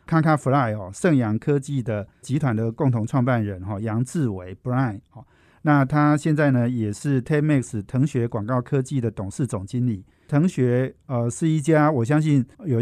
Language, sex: Chinese, male